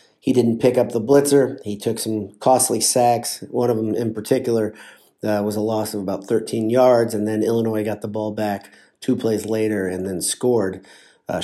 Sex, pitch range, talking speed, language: male, 110-125 Hz, 200 wpm, English